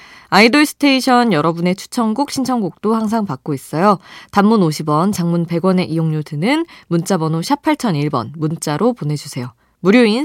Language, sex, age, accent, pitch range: Korean, female, 20-39, native, 155-225 Hz